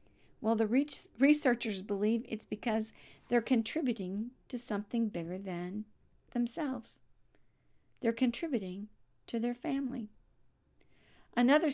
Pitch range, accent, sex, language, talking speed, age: 195-240 Hz, American, female, English, 95 wpm, 50-69